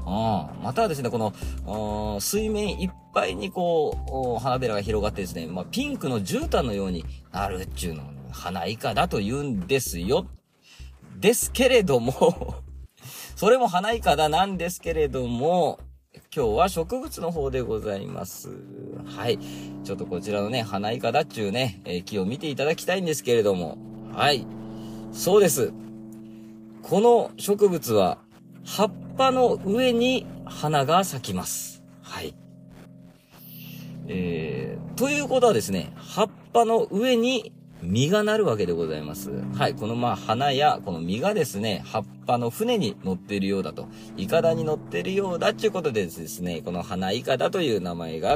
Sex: male